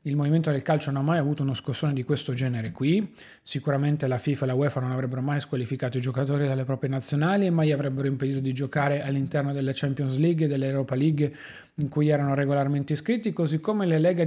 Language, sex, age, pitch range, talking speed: Italian, male, 30-49, 135-160 Hz, 215 wpm